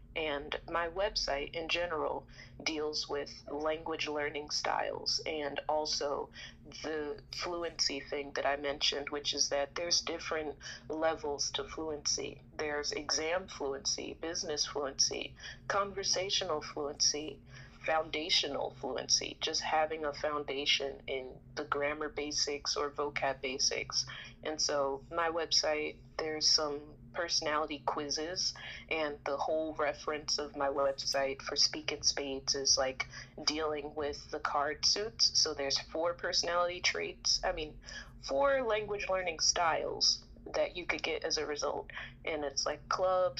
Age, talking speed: 30-49, 130 wpm